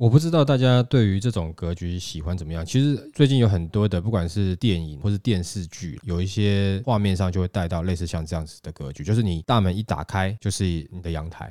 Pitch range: 80-110 Hz